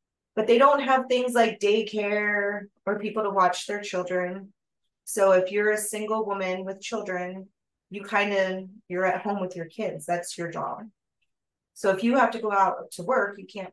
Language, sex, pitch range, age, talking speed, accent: English, female, 175-205 Hz, 30-49, 190 wpm, American